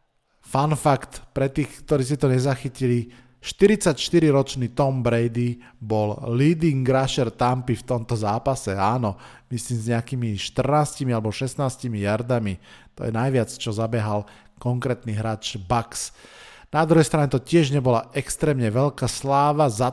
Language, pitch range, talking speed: Slovak, 120-145 Hz, 130 wpm